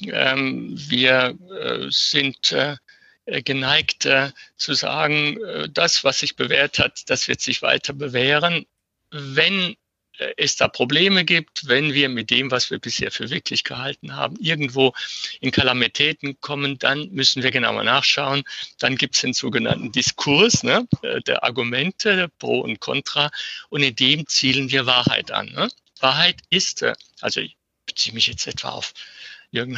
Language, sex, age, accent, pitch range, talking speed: German, male, 60-79, German, 130-150 Hz, 155 wpm